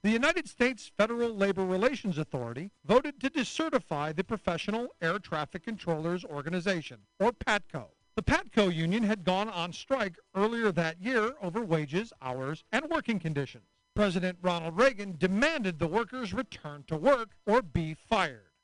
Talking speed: 150 wpm